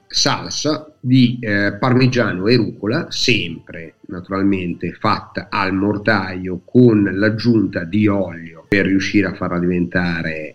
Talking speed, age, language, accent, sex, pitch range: 115 wpm, 50-69, Italian, native, male, 100-125 Hz